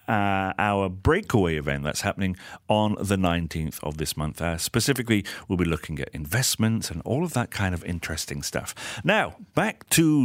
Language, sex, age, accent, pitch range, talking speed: English, male, 40-59, British, 90-125 Hz, 175 wpm